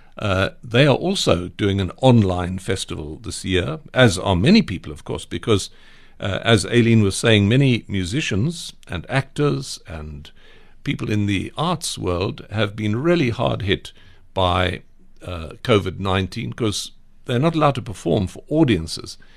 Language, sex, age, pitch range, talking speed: English, male, 60-79, 95-120 Hz, 150 wpm